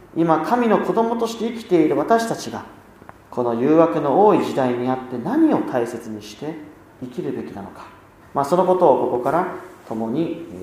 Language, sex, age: Japanese, male, 40-59